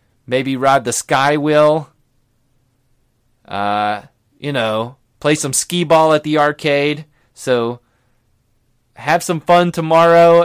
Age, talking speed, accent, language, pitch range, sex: 30-49, 115 wpm, American, English, 130-180 Hz, male